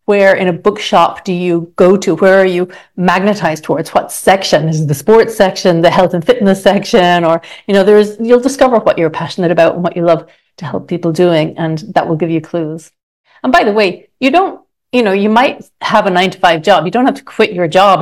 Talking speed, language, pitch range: 245 wpm, English, 175-215 Hz